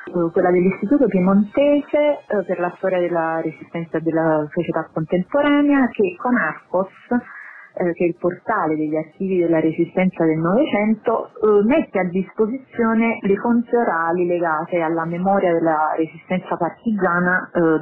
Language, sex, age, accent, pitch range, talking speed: Italian, female, 30-49, native, 165-200 Hz, 130 wpm